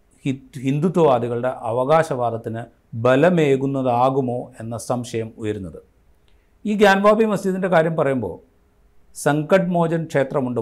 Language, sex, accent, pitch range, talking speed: Malayalam, male, native, 115-150 Hz, 80 wpm